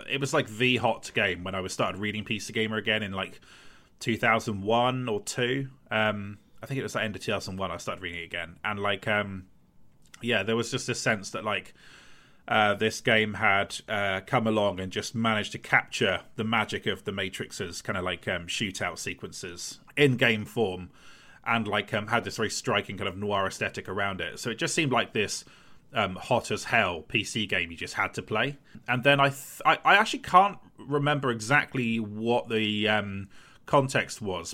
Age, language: 30-49, English